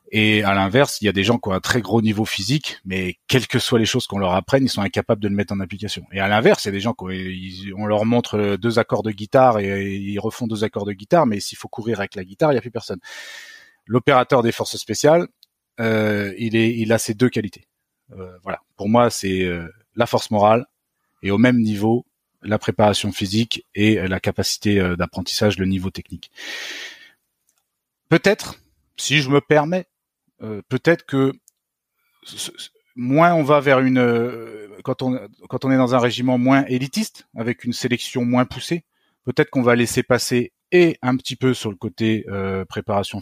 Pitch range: 100-130 Hz